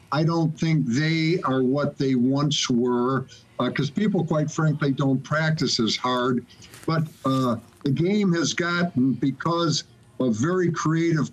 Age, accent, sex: 60-79, American, male